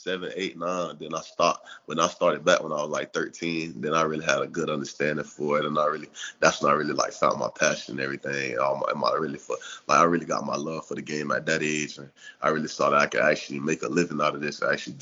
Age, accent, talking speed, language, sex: 20-39, American, 280 wpm, English, male